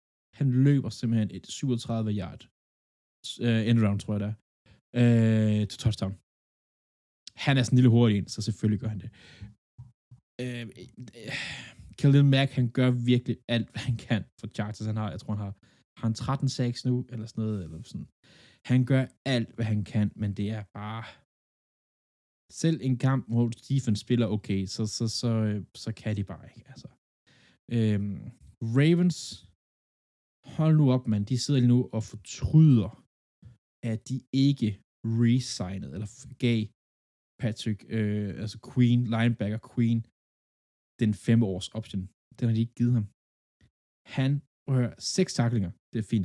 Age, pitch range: 20-39, 105-125 Hz